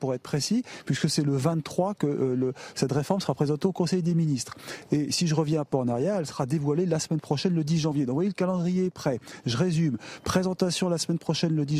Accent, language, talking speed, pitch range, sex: French, French, 250 wpm, 130-170 Hz, male